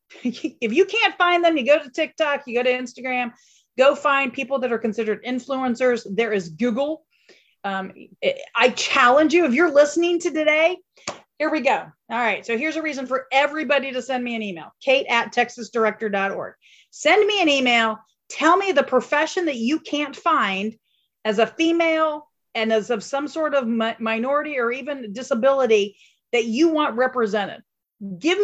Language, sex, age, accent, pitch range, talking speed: English, female, 40-59, American, 225-295 Hz, 175 wpm